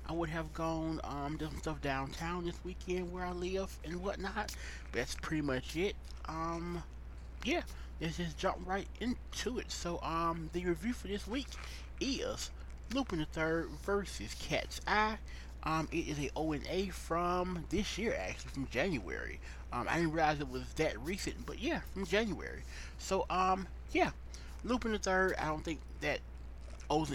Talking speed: 165 wpm